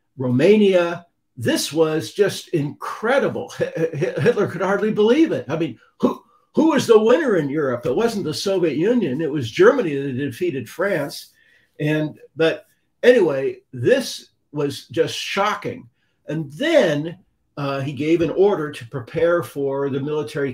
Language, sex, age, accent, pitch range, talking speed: English, male, 50-69, American, 130-185 Hz, 145 wpm